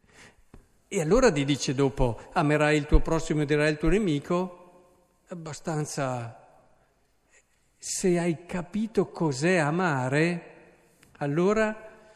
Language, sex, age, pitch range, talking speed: Italian, male, 50-69, 150-220 Hz, 105 wpm